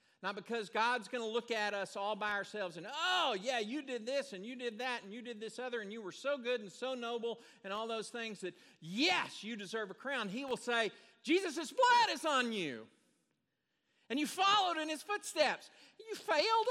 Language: English